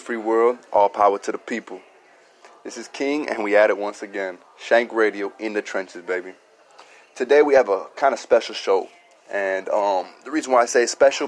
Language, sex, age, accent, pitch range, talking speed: English, male, 20-39, American, 110-140 Hz, 200 wpm